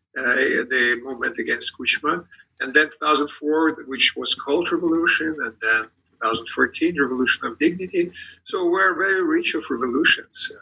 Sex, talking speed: male, 135 wpm